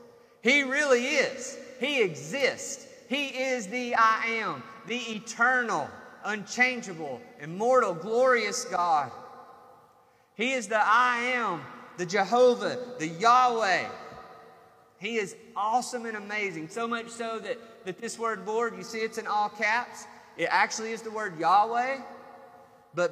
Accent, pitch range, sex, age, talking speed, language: American, 190-235 Hz, male, 30-49, 130 wpm, English